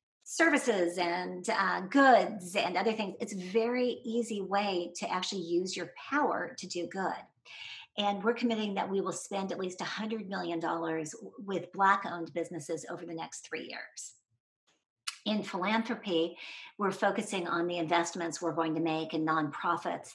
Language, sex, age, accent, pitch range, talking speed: English, female, 40-59, American, 170-225 Hz, 155 wpm